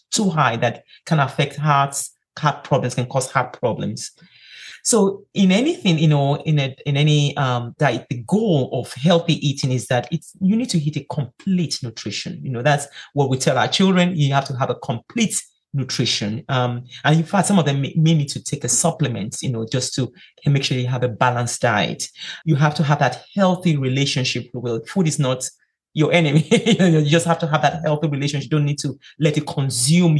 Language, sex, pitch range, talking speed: English, male, 130-160 Hz, 210 wpm